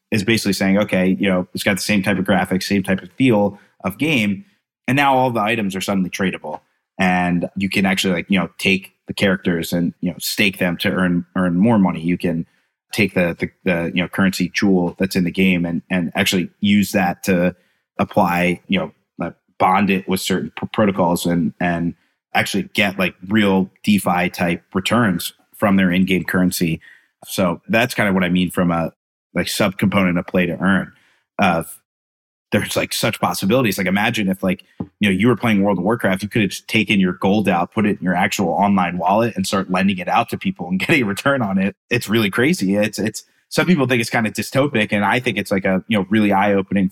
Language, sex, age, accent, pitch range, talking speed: English, male, 30-49, American, 90-105 Hz, 220 wpm